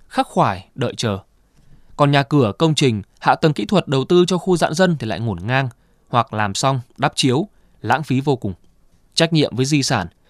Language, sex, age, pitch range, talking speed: Vietnamese, male, 20-39, 115-155 Hz, 215 wpm